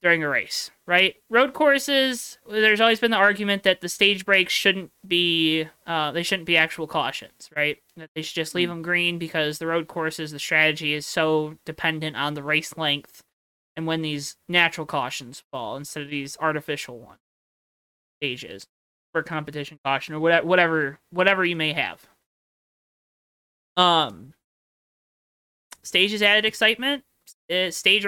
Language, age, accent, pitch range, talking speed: English, 20-39, American, 160-200 Hz, 150 wpm